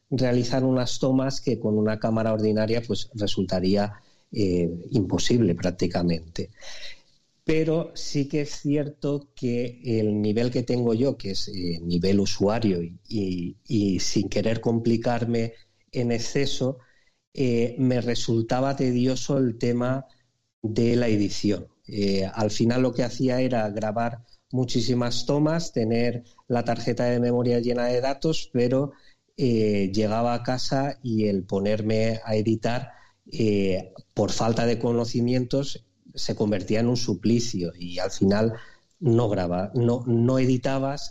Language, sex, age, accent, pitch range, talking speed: Spanish, male, 40-59, Spanish, 105-130 Hz, 135 wpm